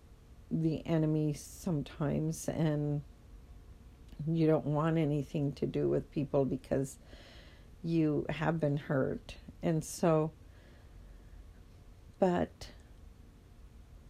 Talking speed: 85 wpm